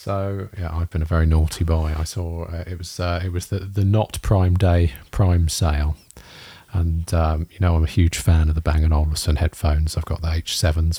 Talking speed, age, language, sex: 215 wpm, 40-59, English, male